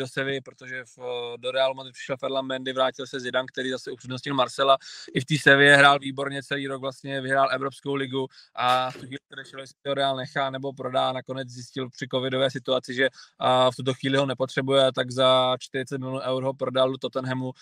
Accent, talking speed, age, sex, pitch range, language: native, 195 wpm, 20-39, male, 130-135 Hz, Czech